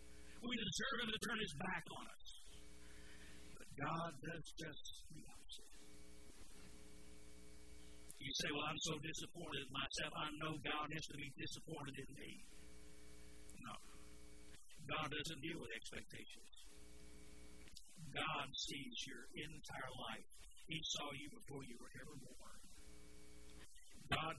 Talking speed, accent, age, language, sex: 130 wpm, American, 60-79, English, male